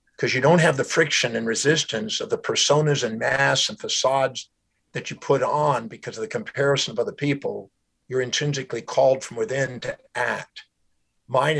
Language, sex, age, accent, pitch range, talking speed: English, male, 50-69, American, 130-145 Hz, 175 wpm